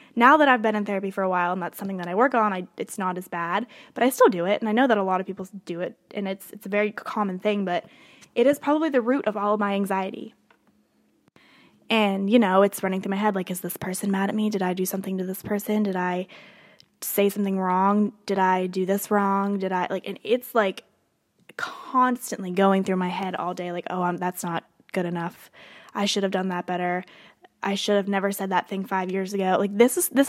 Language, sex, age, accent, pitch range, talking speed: English, female, 10-29, American, 190-220 Hz, 250 wpm